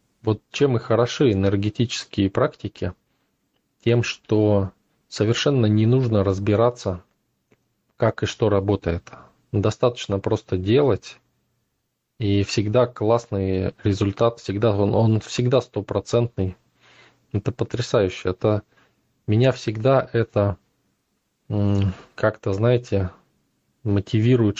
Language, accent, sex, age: Russian, native, male, 20-39